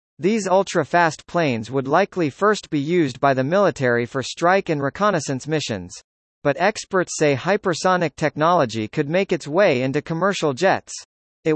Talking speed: 150 wpm